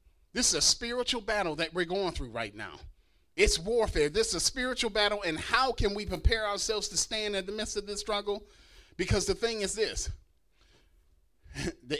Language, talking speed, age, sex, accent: English, 190 wpm, 30-49, male, American